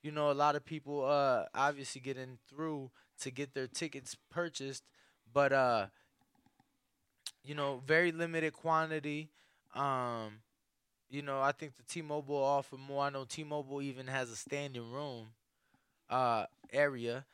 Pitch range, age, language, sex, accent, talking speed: 120-150 Hz, 20-39, English, male, American, 150 wpm